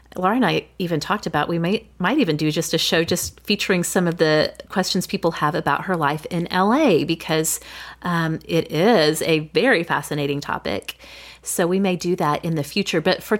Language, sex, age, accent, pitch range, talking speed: English, female, 30-49, American, 160-215 Hz, 200 wpm